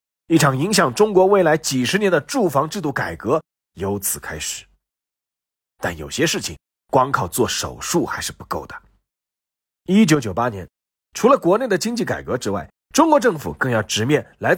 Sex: male